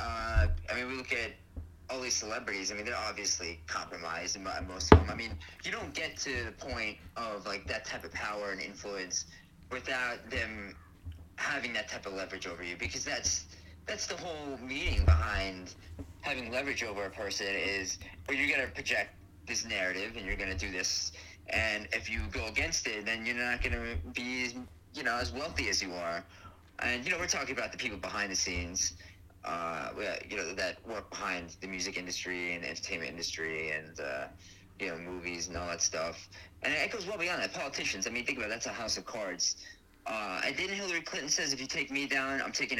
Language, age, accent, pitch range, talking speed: English, 30-49, American, 85-125 Hz, 205 wpm